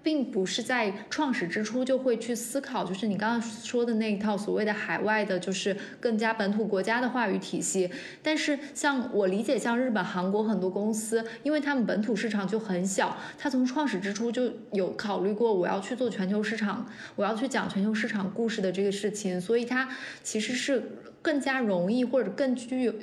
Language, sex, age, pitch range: Chinese, female, 20-39, 200-255 Hz